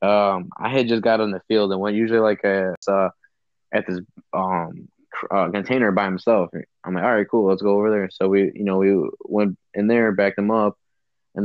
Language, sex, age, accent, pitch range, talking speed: English, male, 20-39, American, 95-105 Hz, 220 wpm